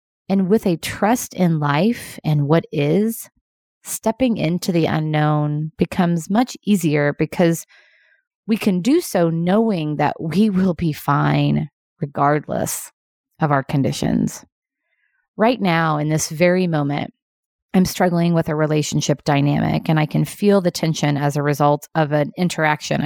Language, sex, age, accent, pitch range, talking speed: English, female, 30-49, American, 150-195 Hz, 145 wpm